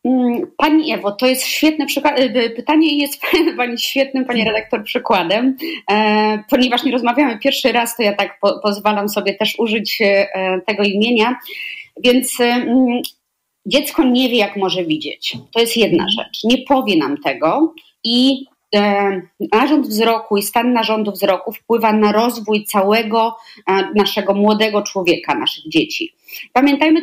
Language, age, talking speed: Polish, 30-49, 130 wpm